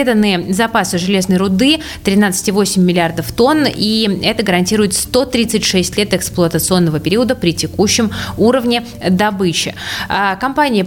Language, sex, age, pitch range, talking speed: Russian, female, 20-39, 175-230 Hz, 100 wpm